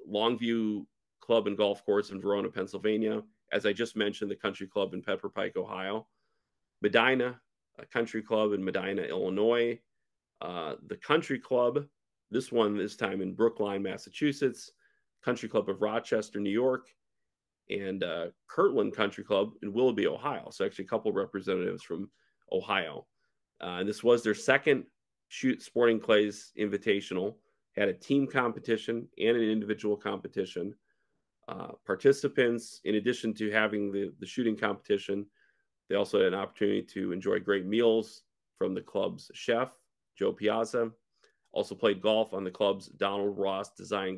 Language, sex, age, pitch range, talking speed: English, male, 40-59, 100-120 Hz, 150 wpm